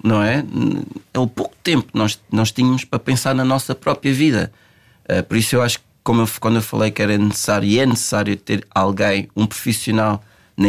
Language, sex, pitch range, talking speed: Portuguese, male, 105-135 Hz, 200 wpm